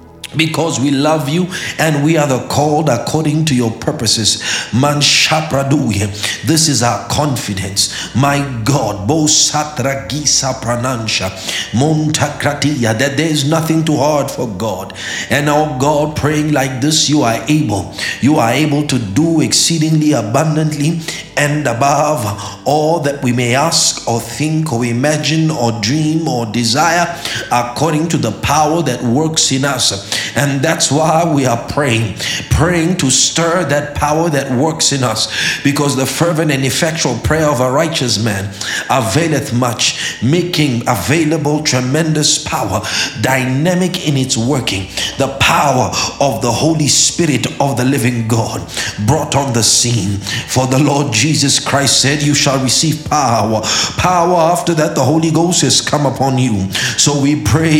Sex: male